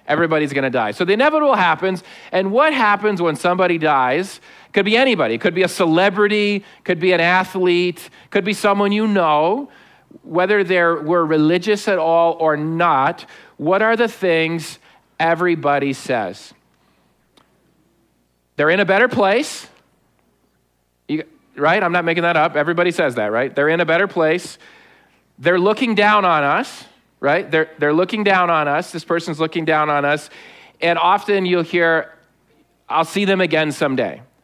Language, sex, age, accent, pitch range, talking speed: English, male, 40-59, American, 145-190 Hz, 155 wpm